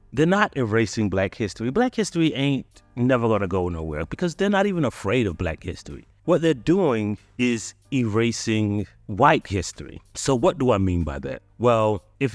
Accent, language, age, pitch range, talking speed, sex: American, English, 30-49, 90-120 Hz, 175 wpm, male